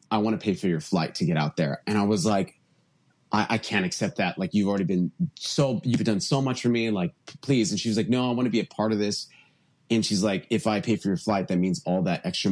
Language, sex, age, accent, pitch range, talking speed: English, male, 30-49, American, 90-130 Hz, 290 wpm